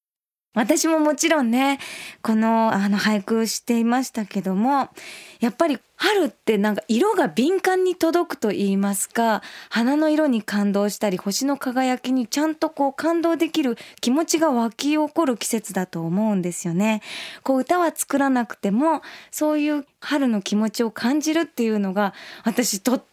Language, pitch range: Japanese, 210-300 Hz